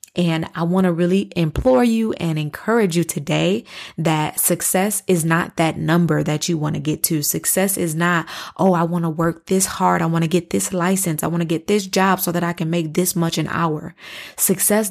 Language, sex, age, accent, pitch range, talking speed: English, female, 20-39, American, 165-190 Hz, 220 wpm